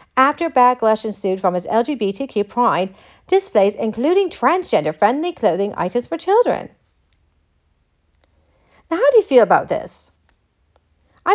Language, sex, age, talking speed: English, female, 40-59, 115 wpm